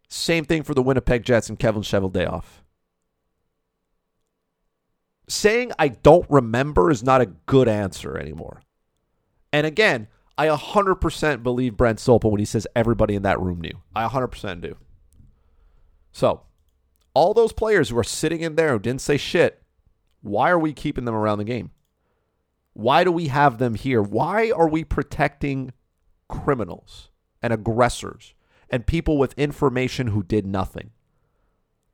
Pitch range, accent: 90-150 Hz, American